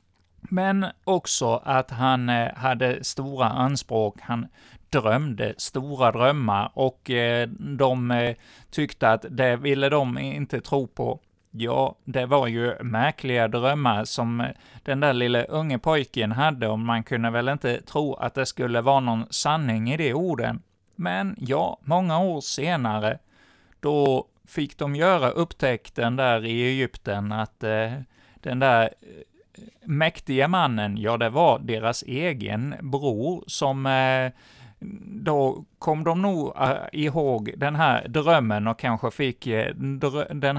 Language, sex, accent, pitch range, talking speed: Swedish, male, native, 115-145 Hz, 125 wpm